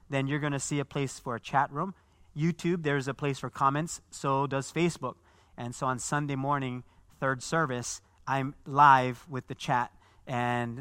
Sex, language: male, English